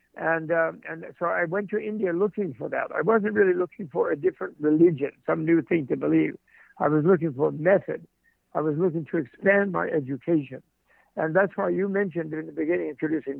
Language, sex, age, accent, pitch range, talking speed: English, male, 60-79, American, 155-190 Hz, 200 wpm